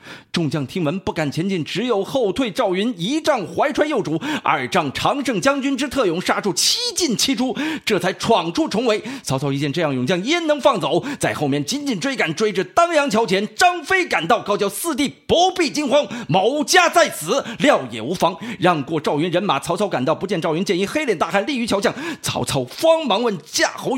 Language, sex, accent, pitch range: Chinese, male, native, 180-285 Hz